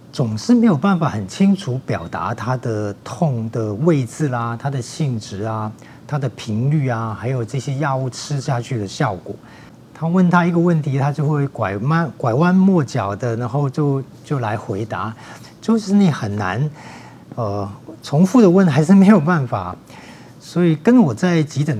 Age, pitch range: 40-59, 115-165 Hz